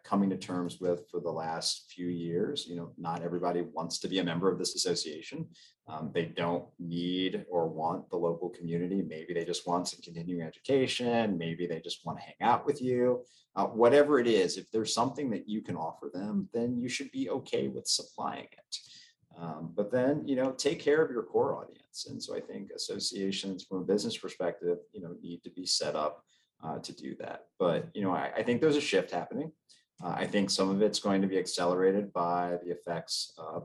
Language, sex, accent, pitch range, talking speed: English, male, American, 85-100 Hz, 215 wpm